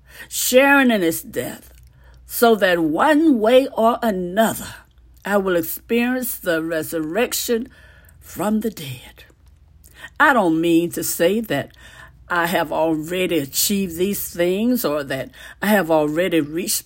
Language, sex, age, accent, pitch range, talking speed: English, female, 60-79, American, 160-255 Hz, 130 wpm